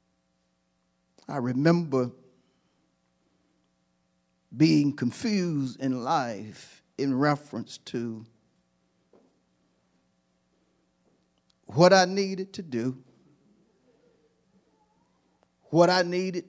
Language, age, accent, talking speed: English, 50-69, American, 60 wpm